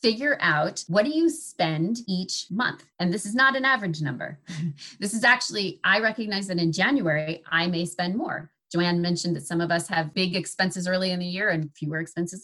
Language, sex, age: English, female, 30-49